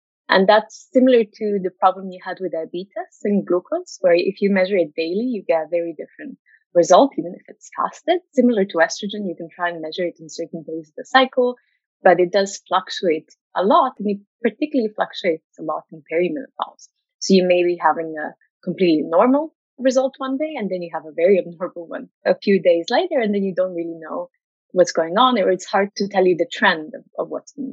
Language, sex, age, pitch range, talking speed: English, female, 20-39, 170-250 Hz, 220 wpm